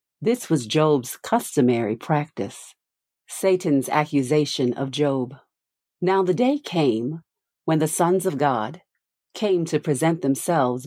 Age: 40-59